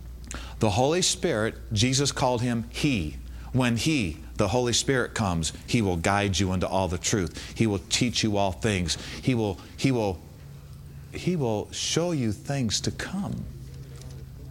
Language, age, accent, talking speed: English, 40-59, American, 155 wpm